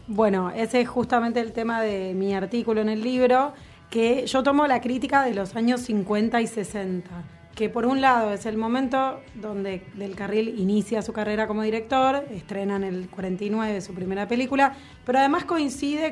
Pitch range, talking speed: 210-255 Hz, 180 wpm